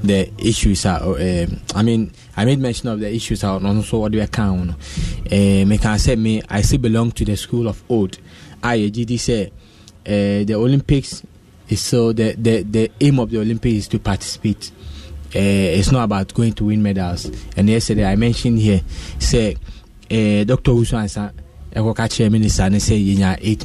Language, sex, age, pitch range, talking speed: English, male, 20-39, 100-115 Hz, 180 wpm